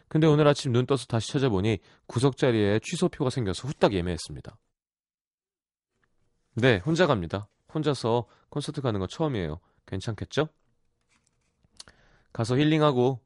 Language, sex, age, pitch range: Korean, male, 30-49, 95-145 Hz